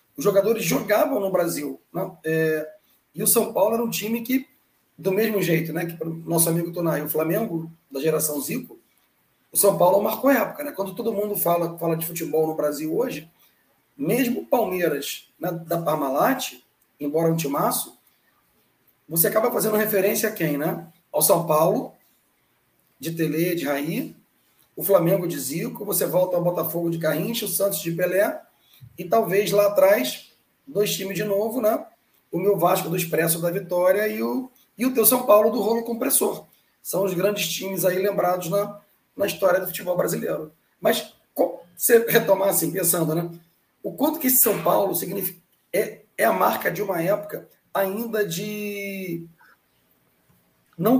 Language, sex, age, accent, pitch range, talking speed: Portuguese, male, 40-59, Brazilian, 165-215 Hz, 170 wpm